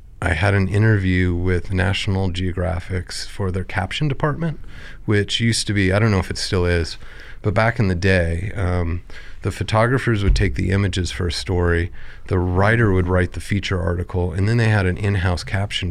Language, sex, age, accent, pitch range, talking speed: English, male, 30-49, American, 90-100 Hz, 190 wpm